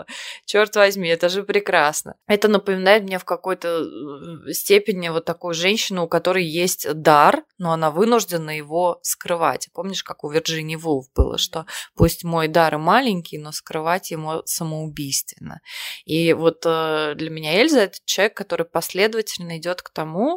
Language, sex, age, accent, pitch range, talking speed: Russian, female, 20-39, native, 160-195 Hz, 150 wpm